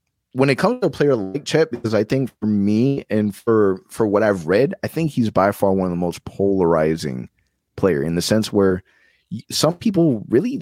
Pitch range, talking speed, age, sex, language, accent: 100-140 Hz, 210 wpm, 30-49, male, English, American